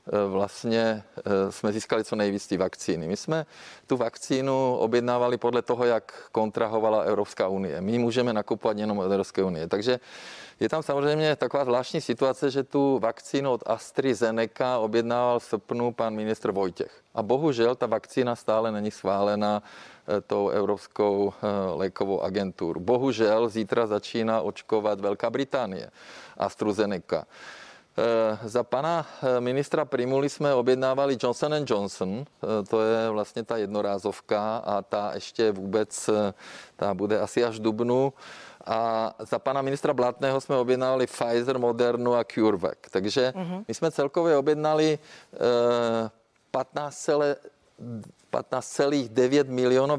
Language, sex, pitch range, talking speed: Czech, male, 110-130 Hz, 120 wpm